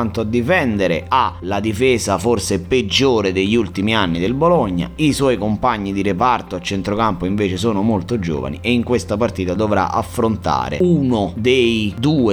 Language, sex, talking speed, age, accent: Italian, male, 155 wpm, 30-49, native